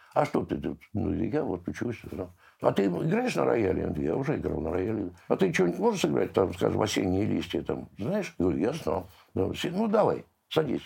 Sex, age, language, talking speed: male, 60-79, Russian, 195 wpm